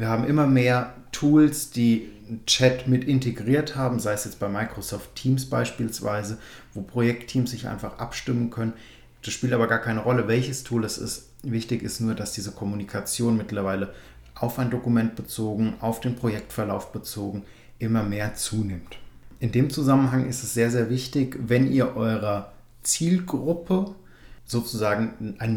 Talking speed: 155 wpm